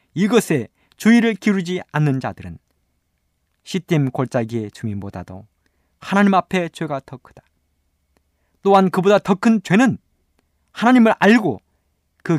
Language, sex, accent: Korean, male, native